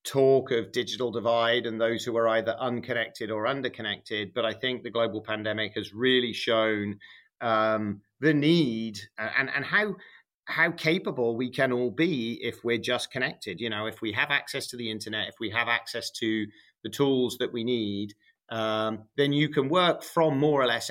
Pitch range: 110-145 Hz